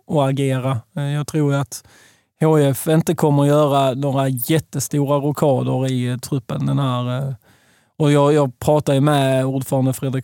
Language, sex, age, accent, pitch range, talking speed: Swedish, male, 20-39, native, 130-145 Hz, 140 wpm